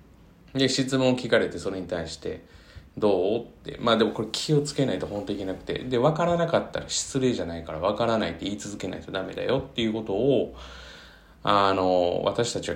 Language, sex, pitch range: Japanese, male, 85-120 Hz